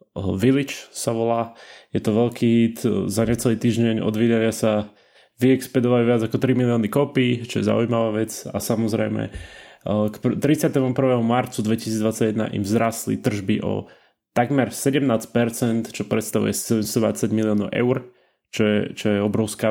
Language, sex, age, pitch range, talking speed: Slovak, male, 20-39, 105-120 Hz, 135 wpm